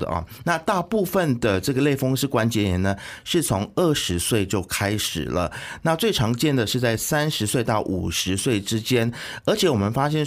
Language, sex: Chinese, male